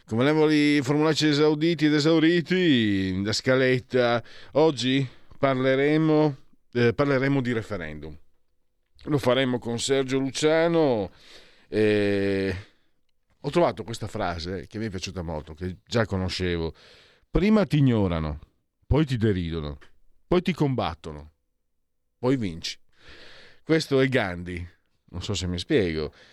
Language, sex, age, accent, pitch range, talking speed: Italian, male, 40-59, native, 95-135 Hz, 120 wpm